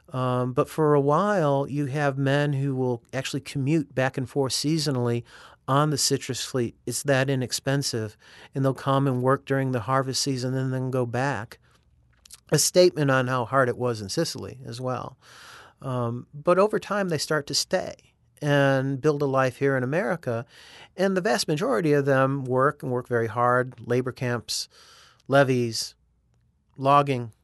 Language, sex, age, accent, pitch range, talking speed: English, male, 40-59, American, 125-150 Hz, 170 wpm